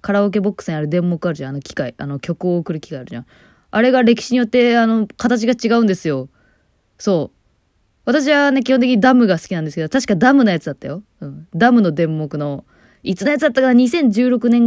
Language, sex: Japanese, female